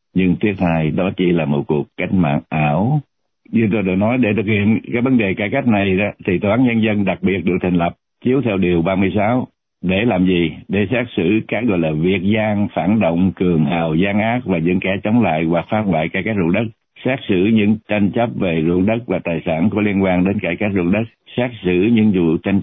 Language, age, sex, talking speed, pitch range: Vietnamese, 60-79, male, 240 wpm, 85-110 Hz